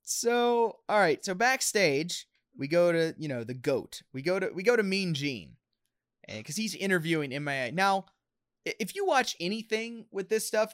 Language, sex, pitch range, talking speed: English, male, 145-205 Hz, 180 wpm